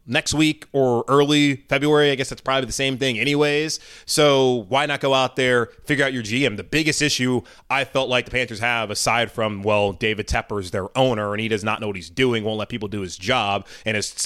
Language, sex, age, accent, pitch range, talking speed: English, male, 20-39, American, 120-175 Hz, 235 wpm